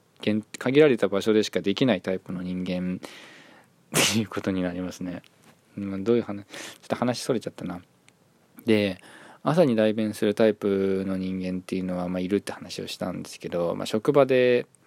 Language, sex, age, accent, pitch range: Japanese, male, 20-39, native, 95-110 Hz